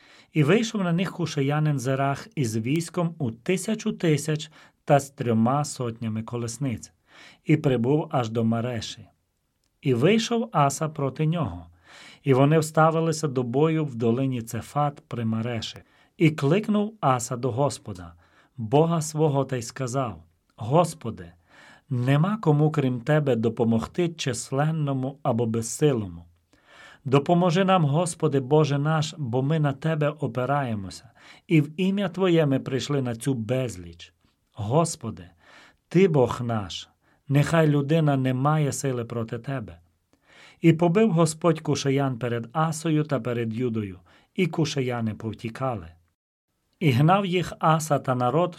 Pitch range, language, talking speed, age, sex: 120-155 Hz, Ukrainian, 125 wpm, 40-59, male